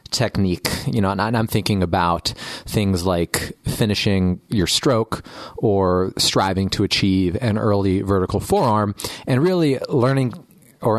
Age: 30-49